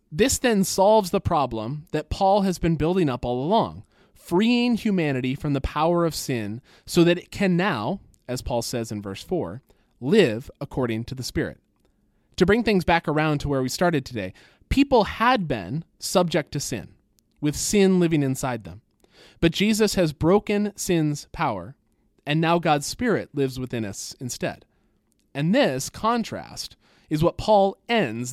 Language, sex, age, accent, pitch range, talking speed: English, male, 20-39, American, 125-185 Hz, 165 wpm